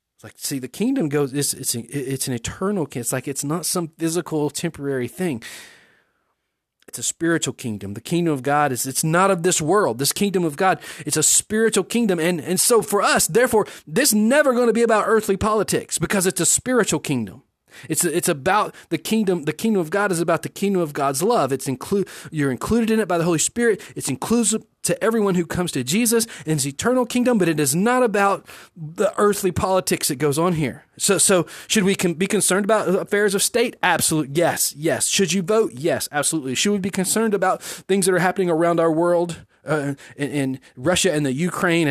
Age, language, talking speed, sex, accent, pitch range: 30-49, English, 215 wpm, male, American, 145-200 Hz